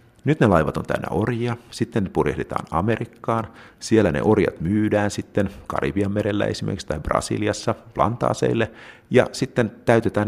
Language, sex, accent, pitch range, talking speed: Finnish, male, native, 90-110 Hz, 135 wpm